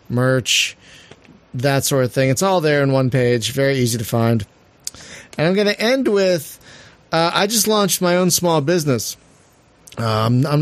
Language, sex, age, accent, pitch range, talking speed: English, male, 40-59, American, 125-150 Hz, 175 wpm